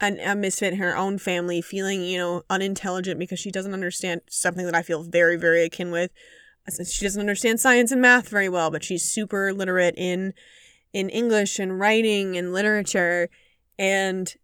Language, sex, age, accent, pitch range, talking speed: English, female, 20-39, American, 185-245 Hz, 180 wpm